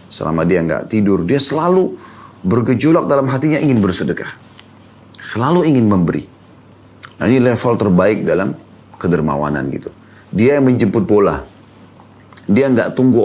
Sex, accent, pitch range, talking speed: male, native, 90-120 Hz, 120 wpm